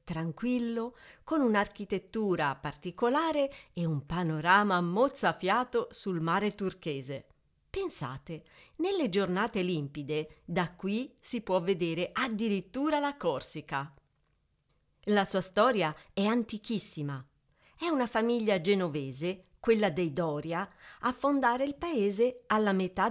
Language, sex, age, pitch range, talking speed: Italian, female, 40-59, 175-240 Hz, 105 wpm